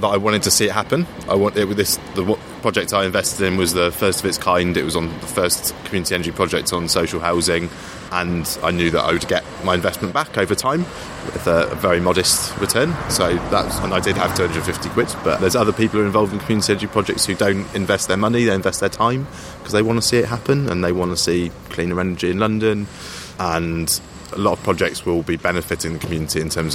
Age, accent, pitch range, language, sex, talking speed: 20-39, British, 80-95 Hz, English, male, 240 wpm